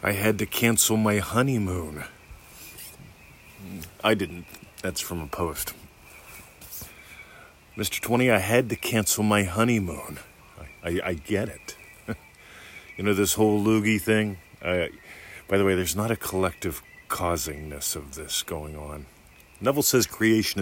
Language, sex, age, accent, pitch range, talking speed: English, male, 40-59, American, 95-110 Hz, 135 wpm